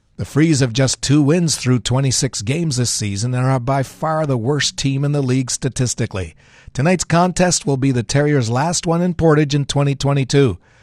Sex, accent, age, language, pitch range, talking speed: male, American, 60-79, English, 110-145 Hz, 190 wpm